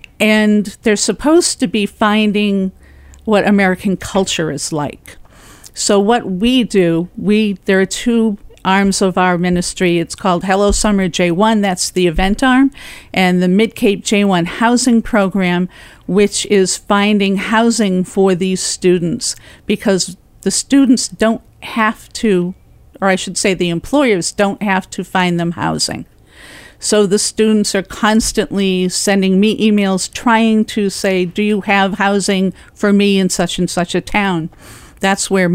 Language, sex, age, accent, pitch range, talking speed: English, female, 50-69, American, 185-210 Hz, 150 wpm